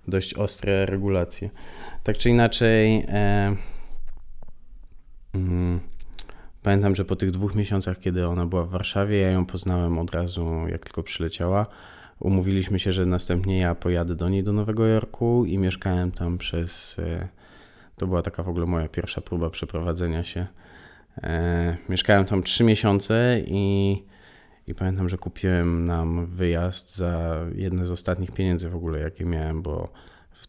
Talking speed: 140 wpm